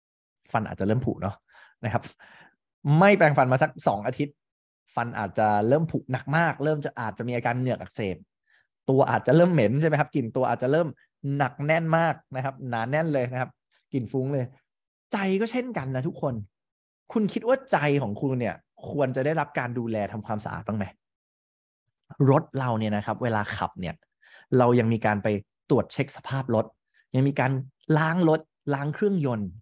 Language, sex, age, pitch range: English, male, 20-39, 110-155 Hz